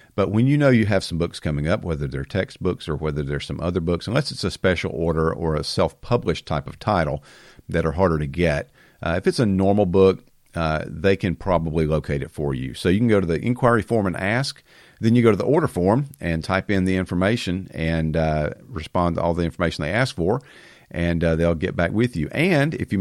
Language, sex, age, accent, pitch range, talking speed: English, male, 50-69, American, 80-100 Hz, 235 wpm